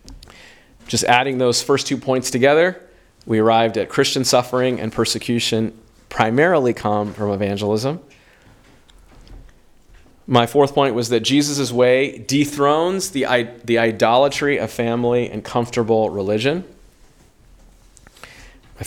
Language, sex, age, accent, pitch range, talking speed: English, male, 40-59, American, 100-125 Hz, 110 wpm